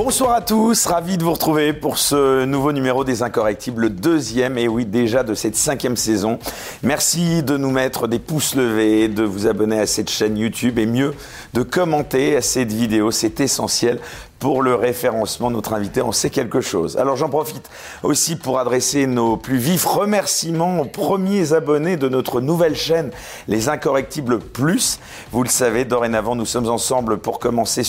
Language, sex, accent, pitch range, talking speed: French, male, French, 120-155 Hz, 180 wpm